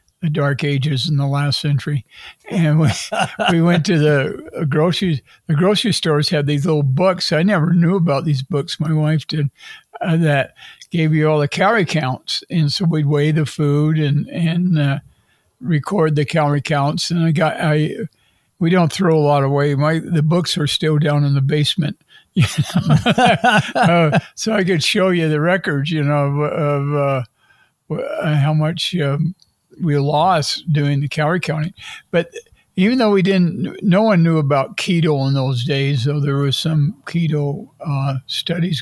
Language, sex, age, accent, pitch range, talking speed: English, male, 60-79, American, 145-165 Hz, 180 wpm